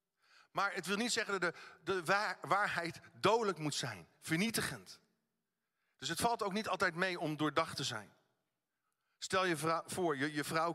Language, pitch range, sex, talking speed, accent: Dutch, 150-195 Hz, male, 165 wpm, Dutch